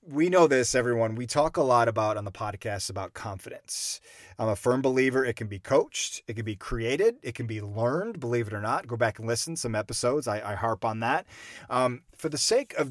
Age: 30-49